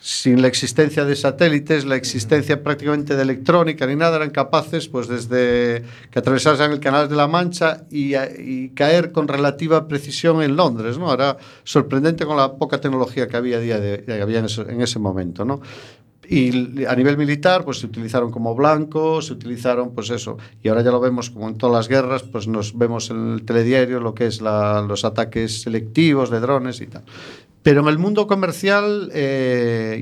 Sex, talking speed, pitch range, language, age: male, 195 wpm, 125-155 Hz, Spanish, 50-69